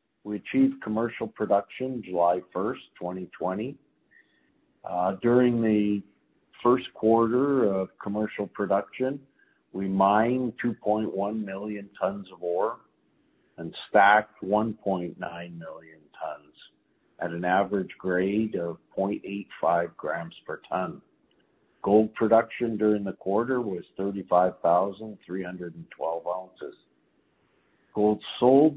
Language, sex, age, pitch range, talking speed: English, male, 50-69, 95-110 Hz, 95 wpm